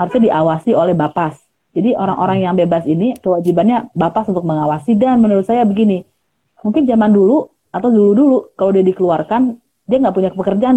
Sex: female